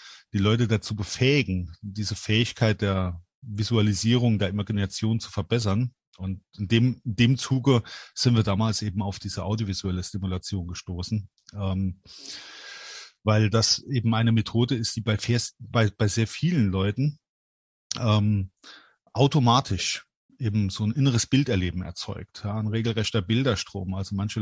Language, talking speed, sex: German, 140 wpm, male